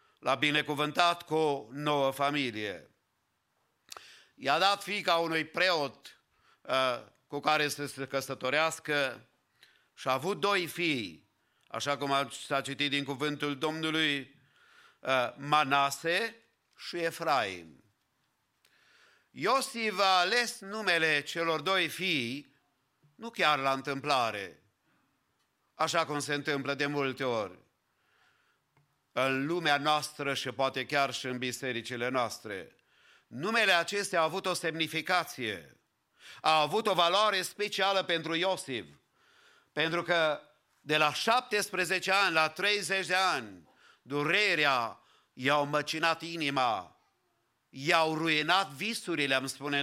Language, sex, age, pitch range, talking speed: English, male, 50-69, 140-185 Hz, 110 wpm